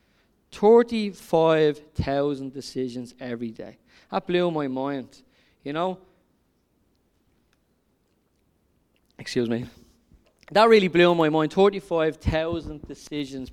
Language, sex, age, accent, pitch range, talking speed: English, male, 20-39, Irish, 140-170 Hz, 85 wpm